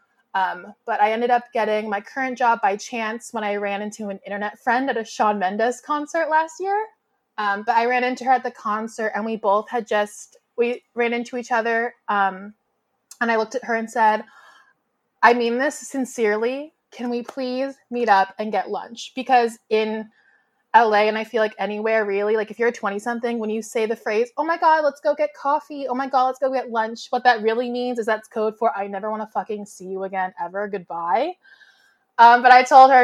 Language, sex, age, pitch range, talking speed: English, female, 20-39, 210-255 Hz, 220 wpm